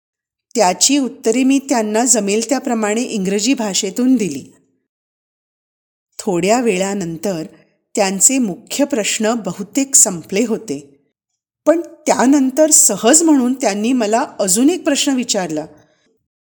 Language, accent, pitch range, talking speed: Marathi, native, 195-275 Hz, 50 wpm